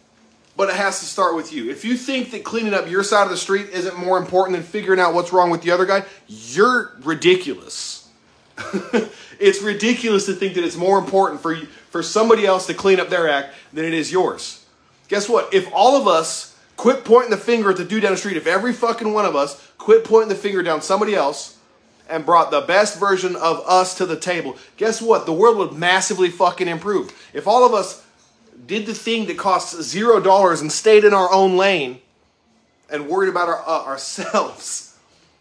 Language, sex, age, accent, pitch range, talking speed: English, male, 30-49, American, 165-205 Hz, 205 wpm